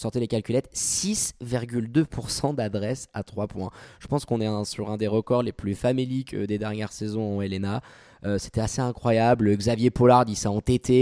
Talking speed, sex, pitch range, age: 180 wpm, male, 110-130 Hz, 20-39